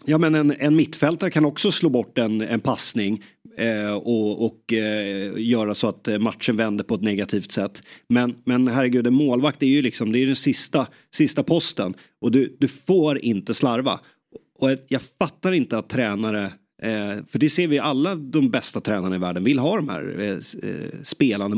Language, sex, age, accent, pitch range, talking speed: Swedish, male, 30-49, native, 110-150 Hz, 190 wpm